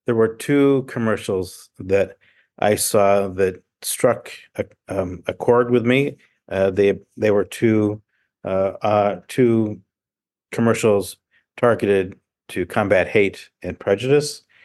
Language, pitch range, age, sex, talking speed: English, 95-110 Hz, 50-69, male, 125 wpm